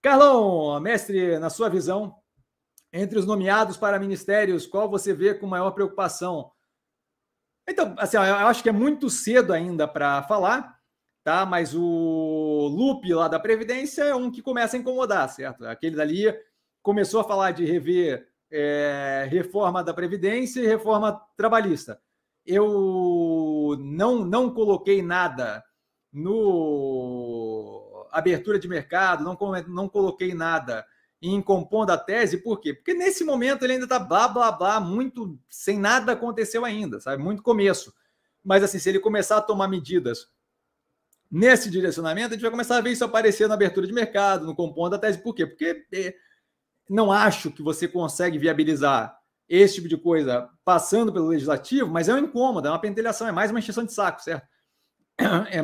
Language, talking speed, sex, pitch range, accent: Portuguese, 160 wpm, male, 165-225 Hz, Brazilian